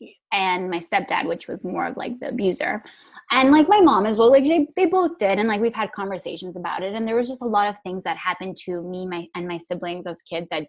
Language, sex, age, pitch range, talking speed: English, female, 10-29, 175-215 Hz, 265 wpm